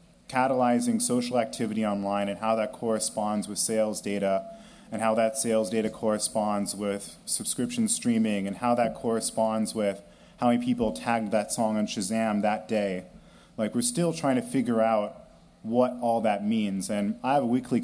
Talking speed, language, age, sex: 170 wpm, English, 30-49, male